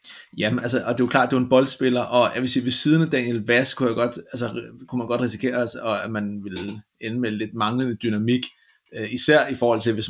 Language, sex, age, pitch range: Danish, male, 30-49, 110-125 Hz